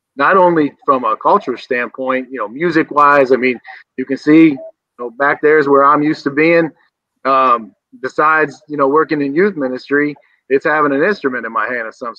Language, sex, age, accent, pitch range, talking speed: English, male, 30-49, American, 135-160 Hz, 195 wpm